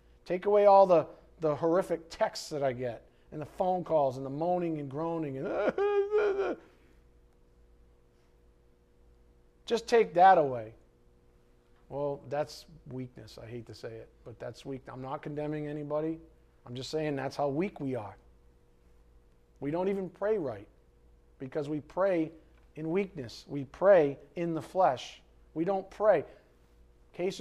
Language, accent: English, American